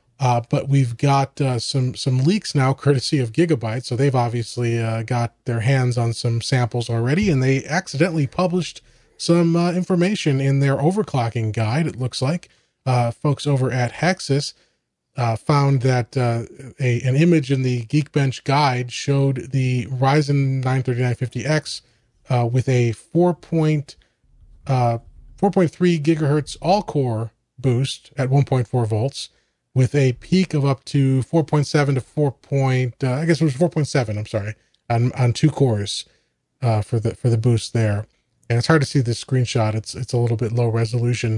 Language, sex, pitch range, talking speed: English, male, 120-145 Hz, 165 wpm